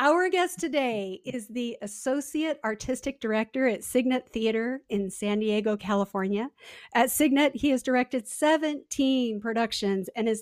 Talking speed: 140 wpm